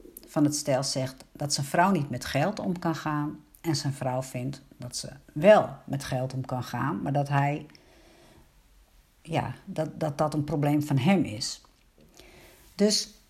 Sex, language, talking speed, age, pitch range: female, Dutch, 170 wpm, 60-79, 140-180 Hz